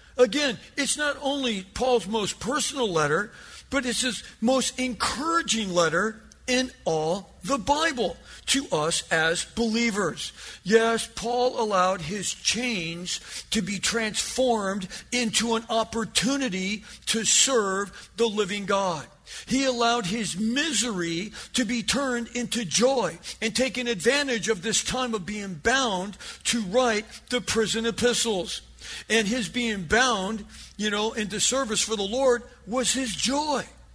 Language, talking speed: English, 135 wpm